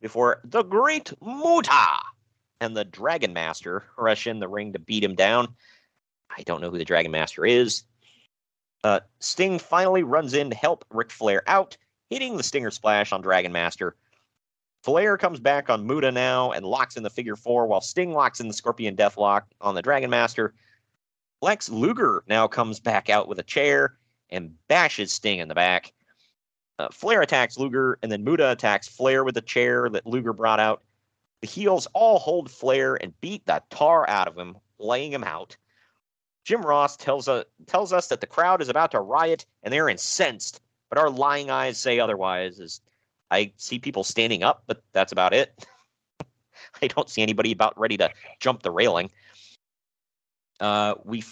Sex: male